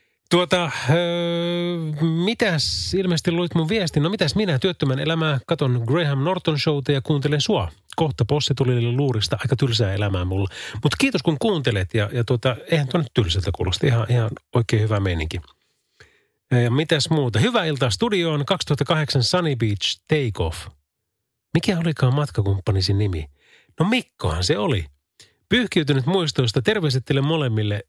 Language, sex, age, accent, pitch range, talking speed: Finnish, male, 30-49, native, 110-160 Hz, 145 wpm